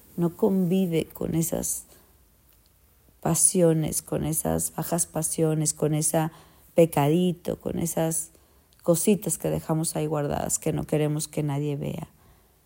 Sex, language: female, Spanish